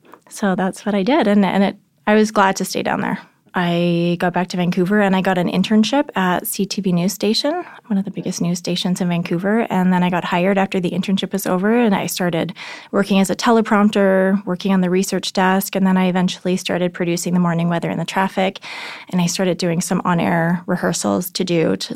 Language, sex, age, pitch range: English, female, 20-39, 175-200 Hz